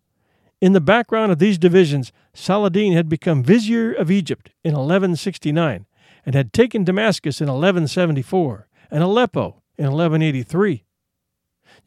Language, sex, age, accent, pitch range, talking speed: English, male, 50-69, American, 140-200 Hz, 120 wpm